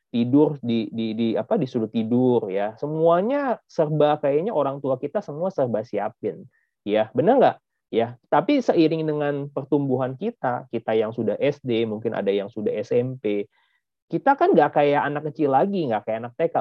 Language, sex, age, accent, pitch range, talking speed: Indonesian, male, 30-49, native, 115-160 Hz, 165 wpm